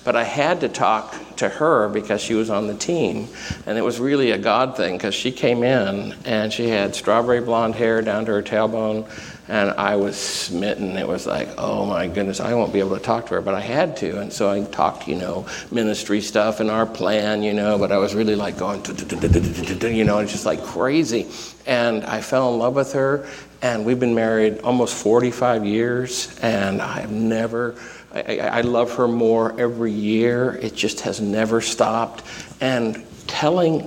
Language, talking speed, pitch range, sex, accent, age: English, 200 wpm, 110-130 Hz, male, American, 60-79